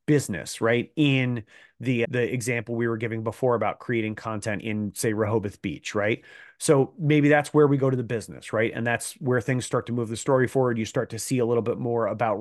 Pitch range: 120-150 Hz